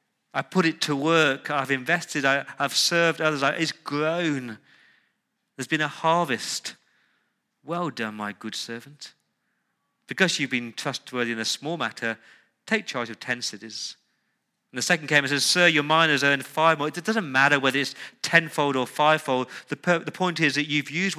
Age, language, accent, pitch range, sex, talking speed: 40-59, English, British, 130-165 Hz, male, 170 wpm